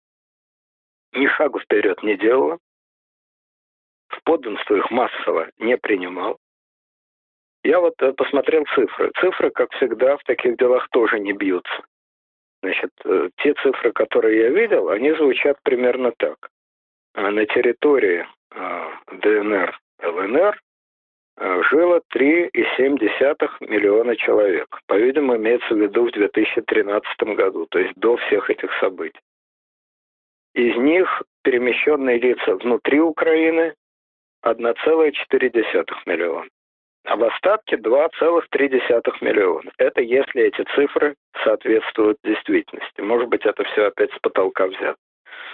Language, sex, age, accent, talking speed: Russian, male, 50-69, native, 110 wpm